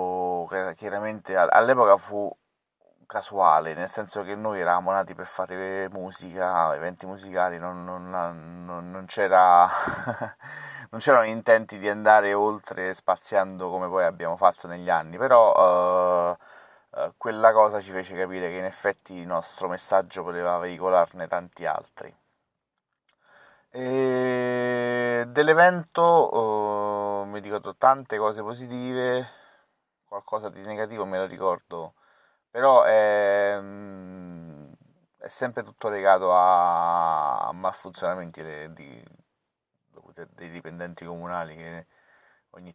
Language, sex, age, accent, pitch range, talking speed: Italian, male, 30-49, native, 85-105 Hz, 105 wpm